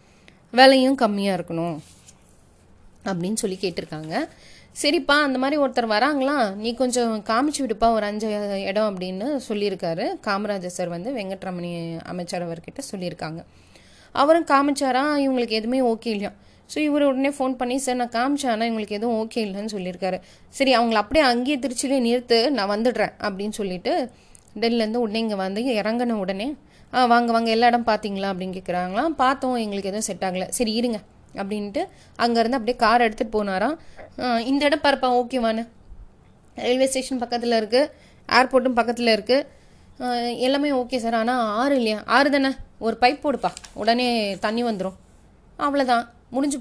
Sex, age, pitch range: female, 30-49, 205-260 Hz